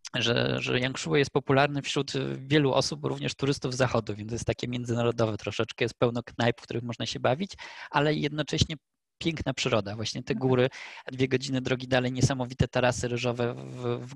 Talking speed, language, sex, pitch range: 175 wpm, Polish, male, 115-130 Hz